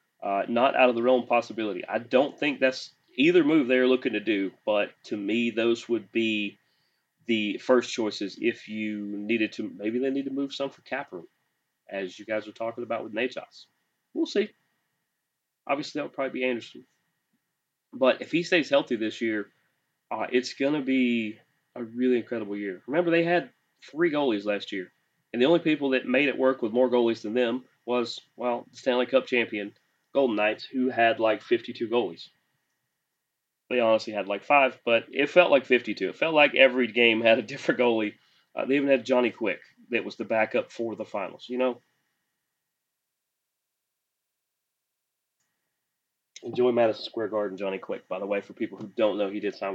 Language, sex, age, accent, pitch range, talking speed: English, male, 30-49, American, 110-130 Hz, 190 wpm